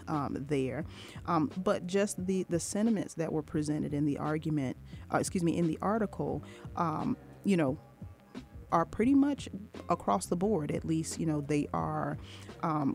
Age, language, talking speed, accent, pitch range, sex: 30-49, English, 165 wpm, American, 140-165 Hz, female